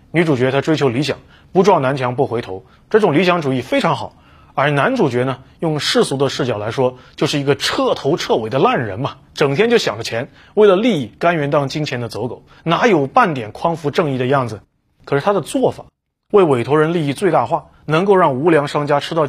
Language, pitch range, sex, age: Chinese, 110-160 Hz, male, 30-49